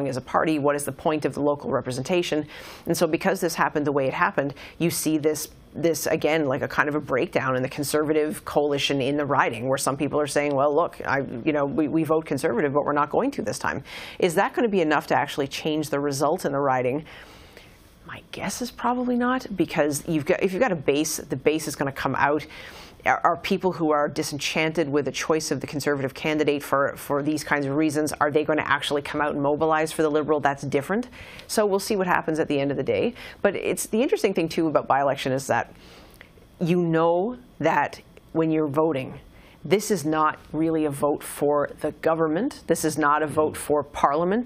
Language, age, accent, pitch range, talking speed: English, 40-59, American, 145-165 Hz, 225 wpm